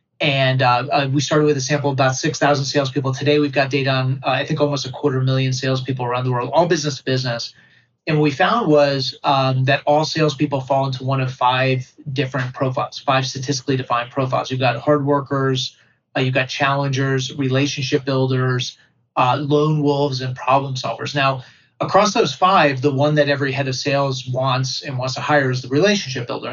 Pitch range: 130-150 Hz